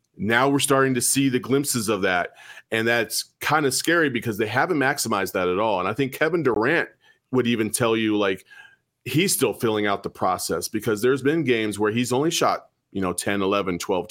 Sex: male